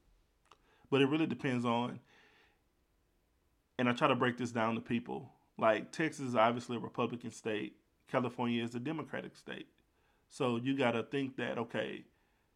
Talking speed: 160 wpm